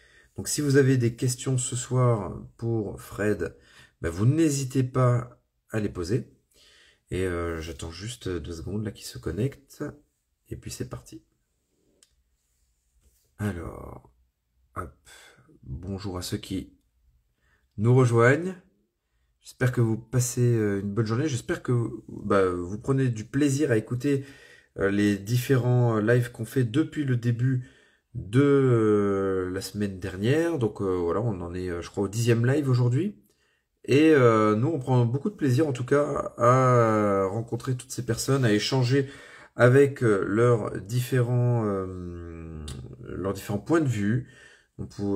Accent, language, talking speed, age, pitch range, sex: French, French, 140 wpm, 40-59, 90-125 Hz, male